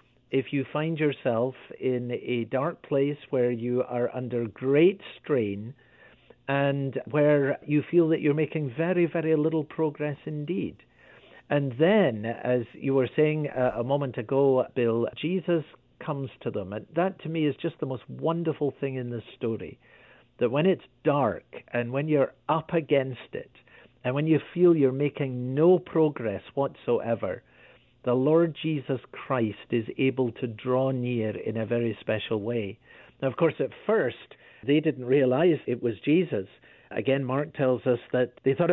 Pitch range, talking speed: 120-155 Hz, 165 wpm